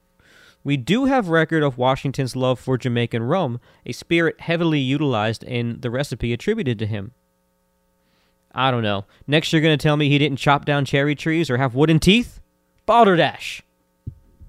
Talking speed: 165 wpm